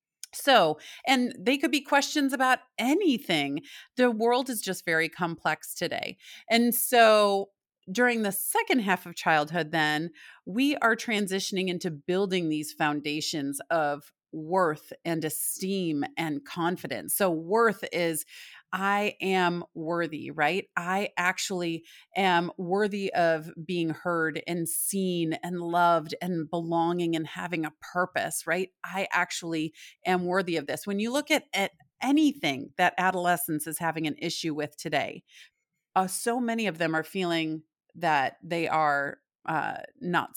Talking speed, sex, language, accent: 140 wpm, female, English, American